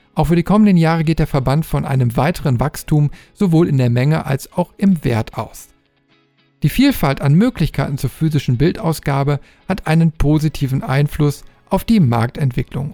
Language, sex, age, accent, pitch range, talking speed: German, male, 50-69, German, 135-170 Hz, 160 wpm